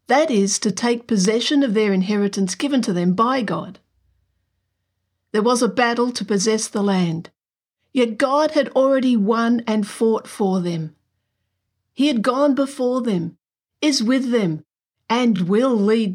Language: English